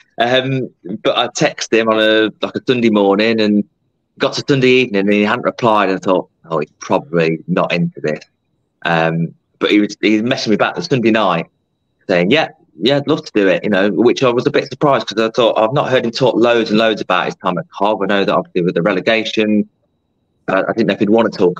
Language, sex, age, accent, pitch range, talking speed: English, male, 30-49, British, 90-110 Hz, 245 wpm